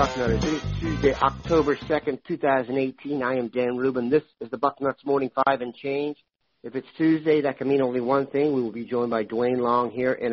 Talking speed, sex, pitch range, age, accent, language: 215 wpm, male, 125-140 Hz, 50-69, American, English